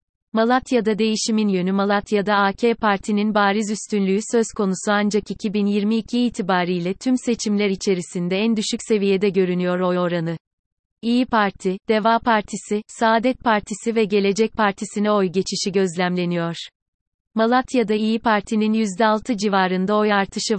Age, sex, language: 30-49, female, Turkish